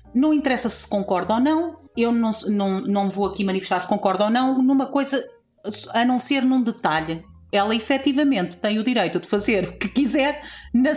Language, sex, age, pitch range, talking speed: Portuguese, female, 40-59, 190-240 Hz, 190 wpm